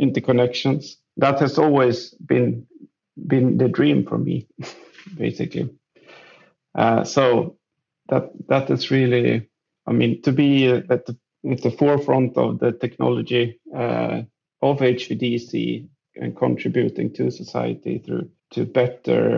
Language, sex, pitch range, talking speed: English, male, 120-145 Hz, 120 wpm